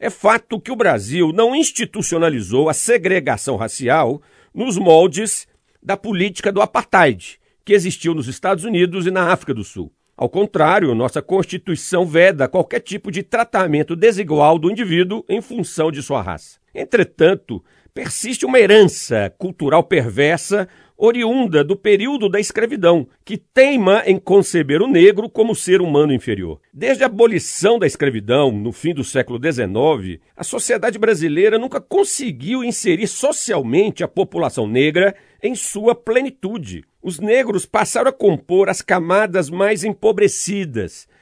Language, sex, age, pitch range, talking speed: Portuguese, male, 50-69, 160-215 Hz, 140 wpm